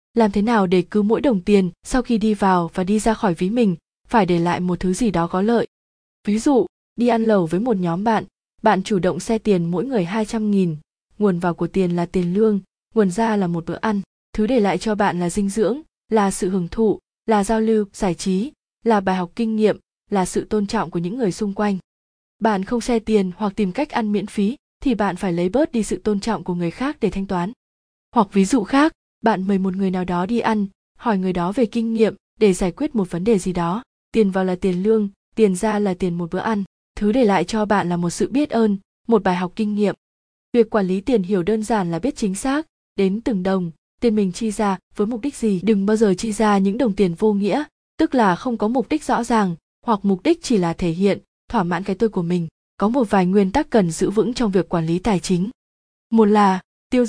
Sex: female